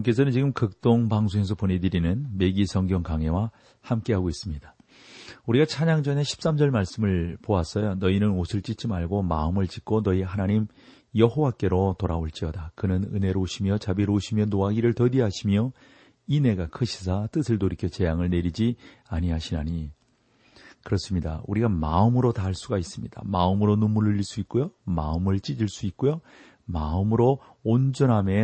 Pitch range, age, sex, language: 90-115 Hz, 40-59, male, Korean